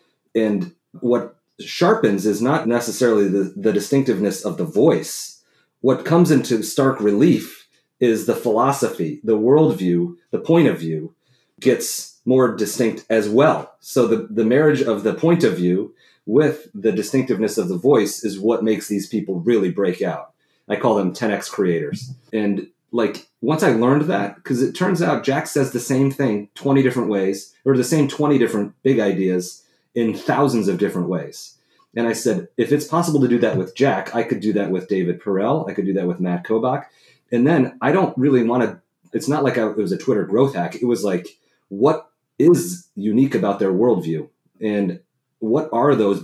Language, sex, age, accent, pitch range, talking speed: English, male, 30-49, American, 100-135 Hz, 185 wpm